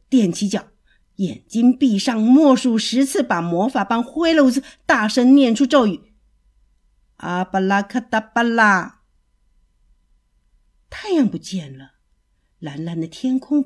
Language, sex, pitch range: Chinese, female, 185-265 Hz